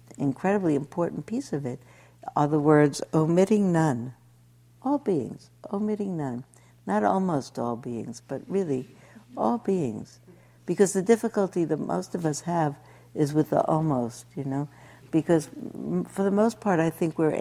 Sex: female